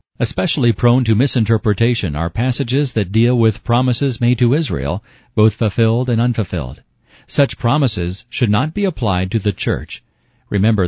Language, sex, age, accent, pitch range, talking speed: English, male, 40-59, American, 110-130 Hz, 150 wpm